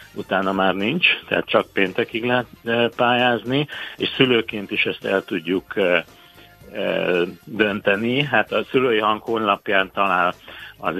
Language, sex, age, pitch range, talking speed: Hungarian, male, 60-79, 95-110 Hz, 120 wpm